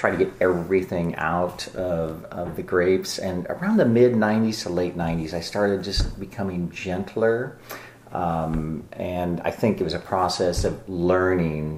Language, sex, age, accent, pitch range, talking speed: English, male, 40-59, American, 80-95 Hz, 160 wpm